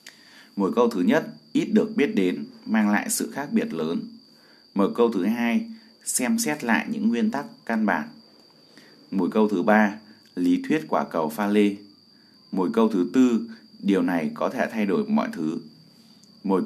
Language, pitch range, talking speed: Vietnamese, 215-235 Hz, 175 wpm